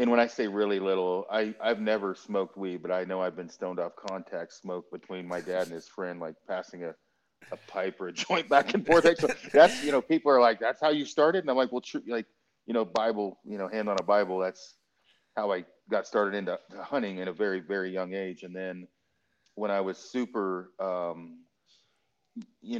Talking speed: 215 wpm